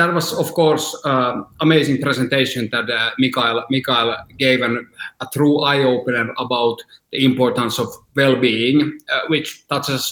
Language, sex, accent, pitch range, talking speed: Finnish, male, native, 130-155 Hz, 150 wpm